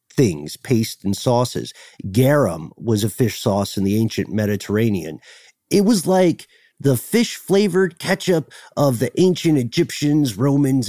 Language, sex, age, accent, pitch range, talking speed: English, male, 50-69, American, 105-145 Hz, 130 wpm